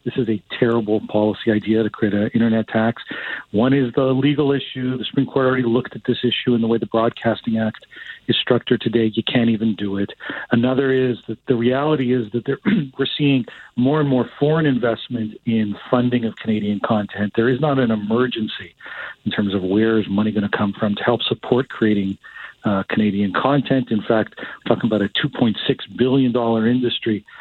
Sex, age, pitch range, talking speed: male, 50-69, 110-130 Hz, 195 wpm